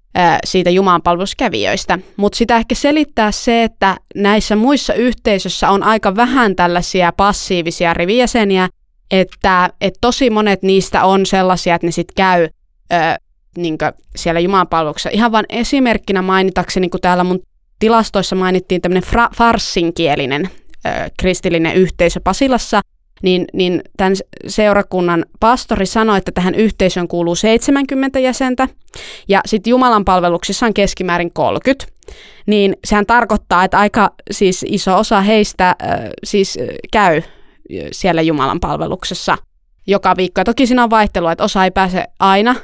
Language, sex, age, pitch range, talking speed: Finnish, female, 20-39, 180-220 Hz, 120 wpm